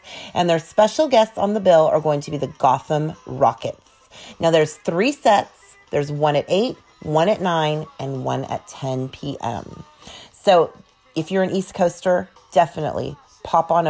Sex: female